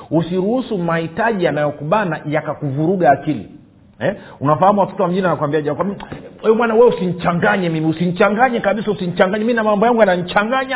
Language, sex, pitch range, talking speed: Swahili, male, 130-185 Hz, 160 wpm